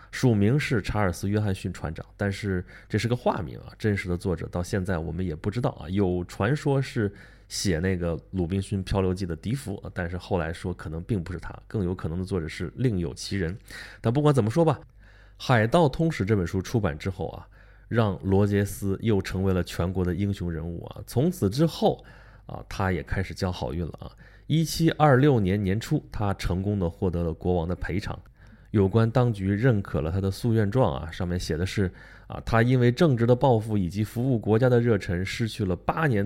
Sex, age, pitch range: male, 20-39, 90-115 Hz